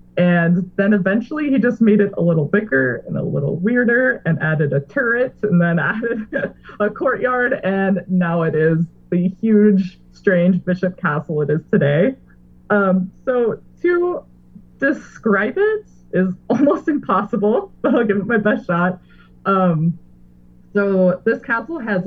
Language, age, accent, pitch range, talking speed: English, 20-39, American, 170-215 Hz, 150 wpm